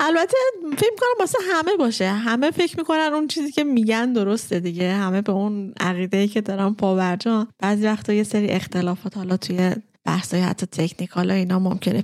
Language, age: Persian, 20-39